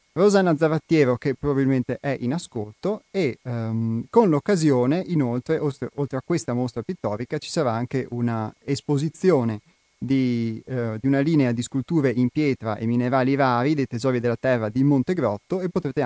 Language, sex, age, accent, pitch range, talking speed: Italian, male, 30-49, native, 120-145 Hz, 155 wpm